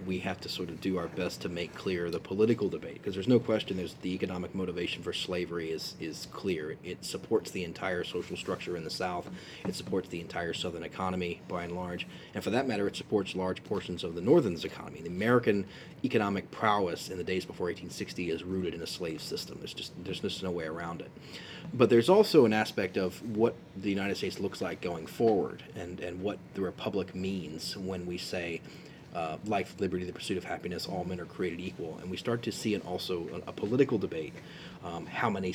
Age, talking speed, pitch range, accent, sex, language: 30-49, 220 wpm, 90-100 Hz, American, male, English